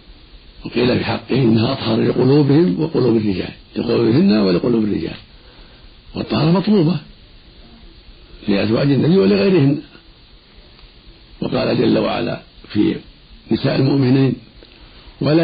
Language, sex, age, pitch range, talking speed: Arabic, male, 50-69, 105-135 Hz, 90 wpm